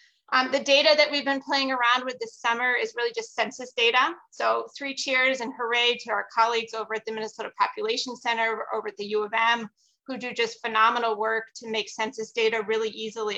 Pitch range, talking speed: 220-255 Hz, 210 wpm